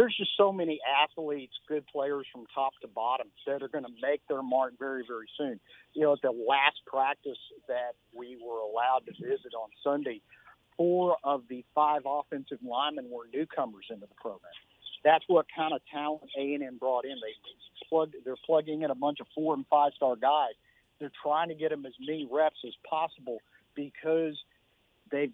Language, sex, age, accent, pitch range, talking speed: English, male, 50-69, American, 130-160 Hz, 180 wpm